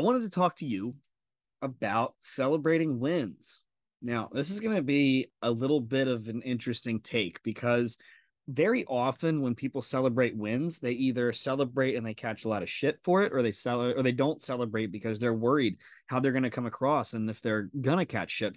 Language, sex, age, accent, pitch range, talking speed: English, male, 20-39, American, 120-180 Hz, 205 wpm